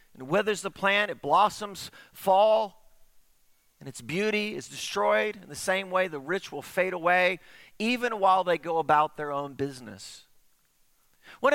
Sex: male